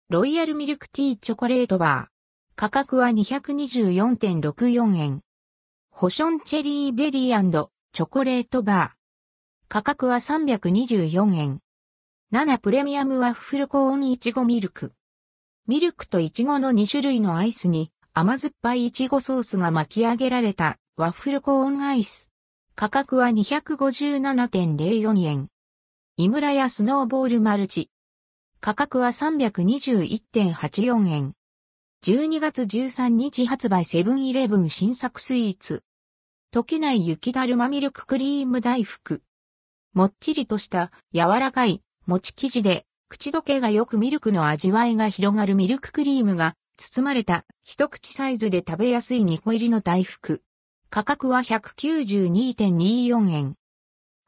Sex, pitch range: female, 180-265 Hz